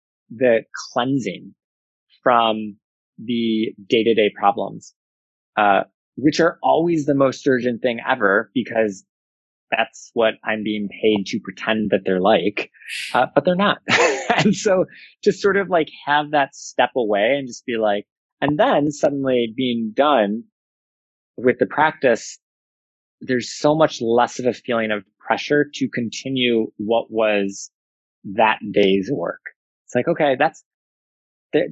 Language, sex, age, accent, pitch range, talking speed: English, male, 20-39, American, 100-130 Hz, 140 wpm